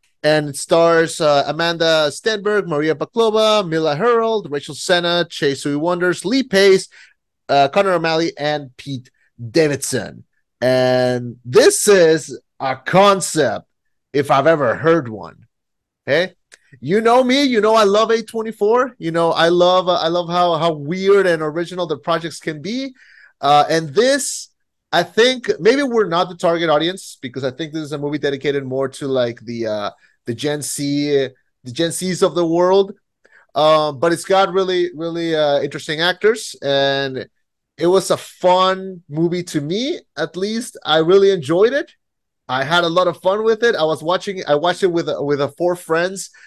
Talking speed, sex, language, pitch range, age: 175 wpm, male, English, 145-190 Hz, 30-49